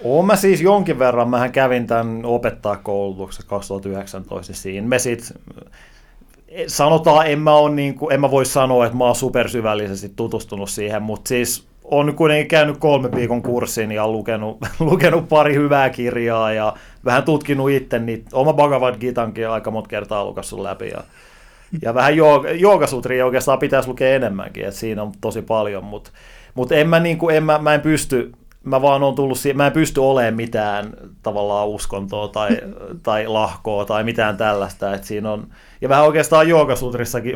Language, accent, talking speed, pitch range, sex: Finnish, native, 165 wpm, 110-135 Hz, male